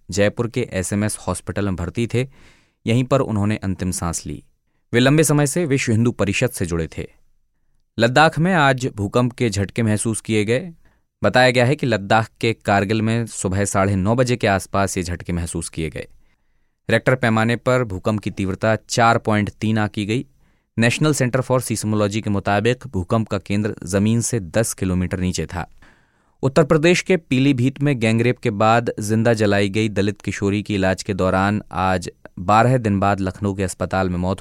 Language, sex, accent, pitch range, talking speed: Hindi, male, native, 95-120 Hz, 175 wpm